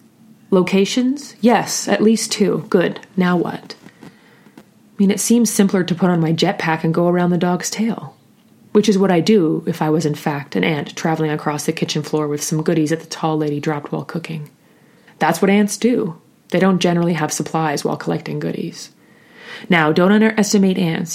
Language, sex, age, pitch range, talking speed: English, female, 30-49, 160-205 Hz, 190 wpm